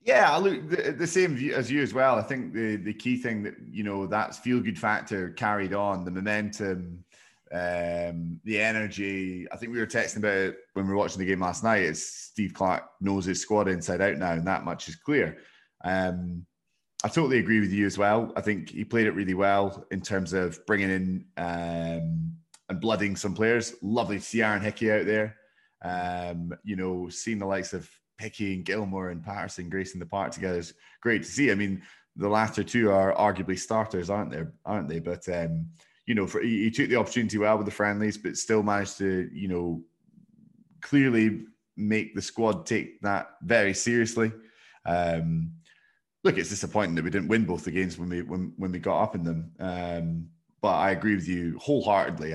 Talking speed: 205 wpm